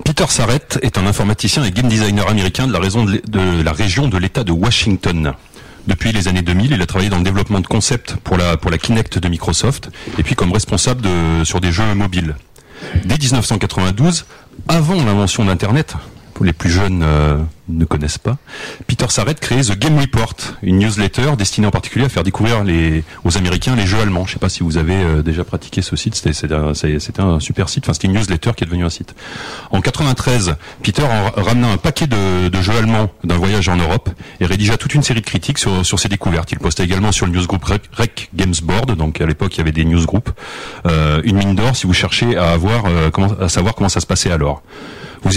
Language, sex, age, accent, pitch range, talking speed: French, male, 30-49, French, 85-115 Hz, 220 wpm